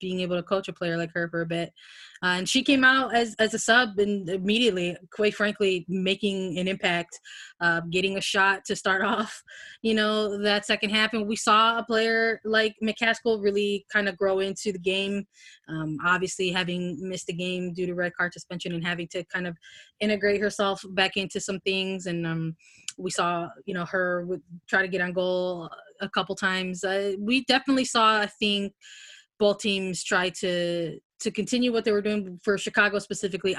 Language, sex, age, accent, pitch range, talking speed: English, female, 20-39, American, 180-210 Hz, 195 wpm